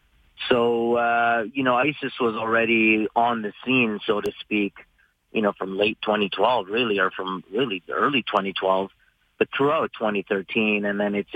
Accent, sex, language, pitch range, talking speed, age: American, male, English, 100-110 Hz, 160 wpm, 30-49